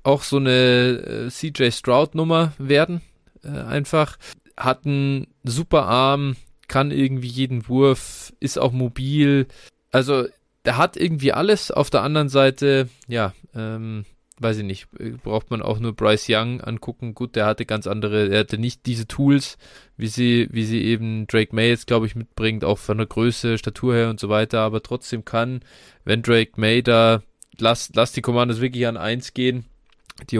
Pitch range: 110-130 Hz